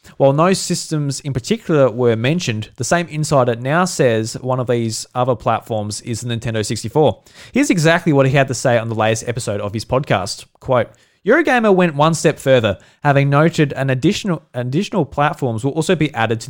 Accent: Australian